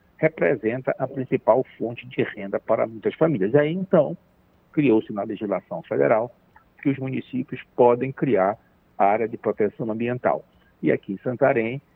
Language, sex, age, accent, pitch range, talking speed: Portuguese, male, 60-79, Brazilian, 115-150 Hz, 145 wpm